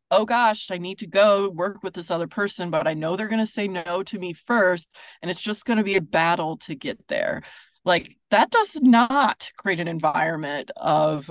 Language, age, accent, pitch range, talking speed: English, 20-39, American, 165-215 Hz, 220 wpm